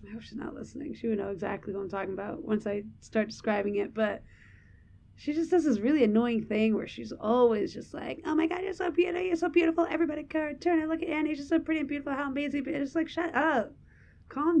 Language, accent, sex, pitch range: English, American, female, 205-280 Hz